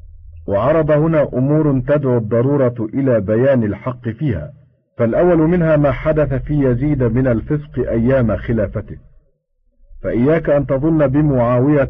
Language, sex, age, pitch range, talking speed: Arabic, male, 50-69, 120-145 Hz, 115 wpm